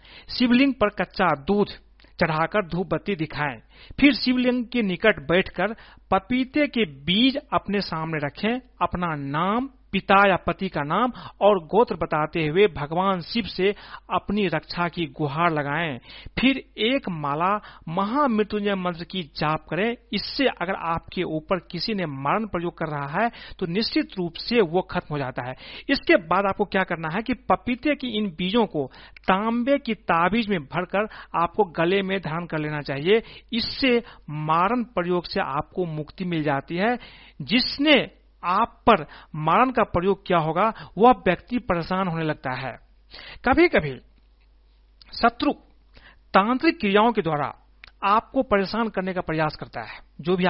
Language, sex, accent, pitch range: Hindi, male, native, 160-220 Hz